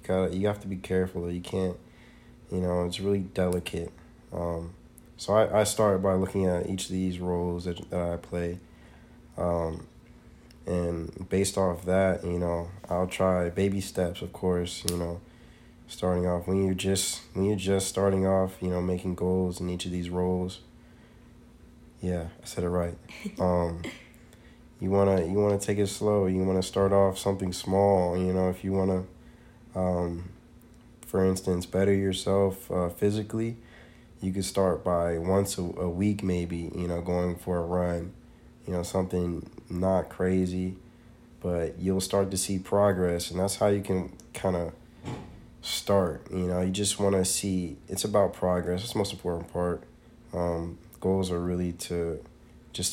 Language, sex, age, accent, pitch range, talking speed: English, male, 20-39, American, 85-95 Hz, 170 wpm